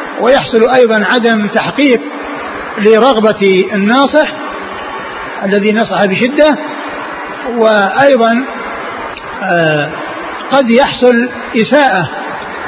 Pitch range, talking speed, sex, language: 190-230 Hz, 60 wpm, male, Arabic